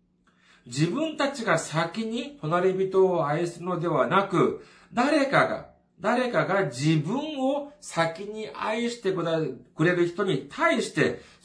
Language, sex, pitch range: Japanese, male, 155-240 Hz